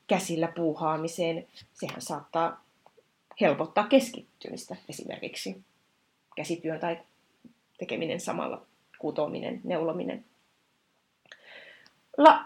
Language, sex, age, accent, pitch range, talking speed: Finnish, female, 30-49, native, 170-235 Hz, 65 wpm